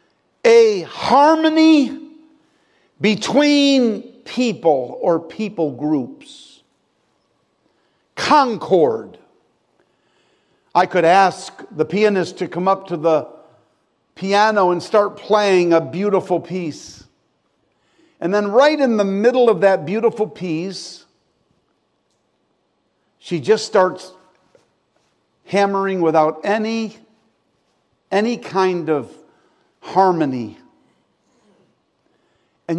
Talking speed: 85 wpm